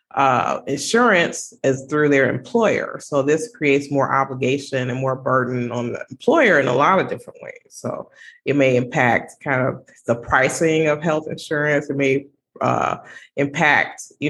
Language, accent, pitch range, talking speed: English, American, 135-150 Hz, 165 wpm